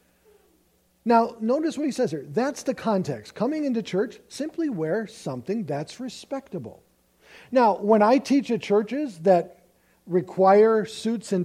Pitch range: 160-230 Hz